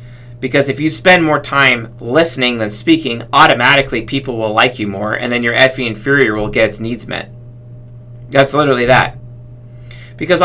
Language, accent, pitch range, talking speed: English, American, 115-135 Hz, 165 wpm